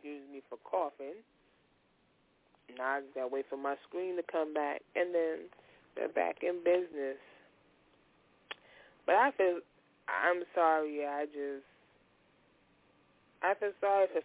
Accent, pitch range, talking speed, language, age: American, 135-175 Hz, 135 wpm, English, 20-39